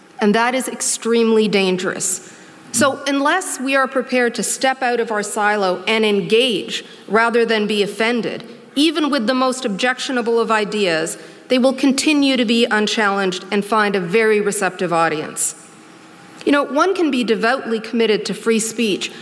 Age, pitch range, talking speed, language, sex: 40-59, 210-255 Hz, 160 wpm, English, female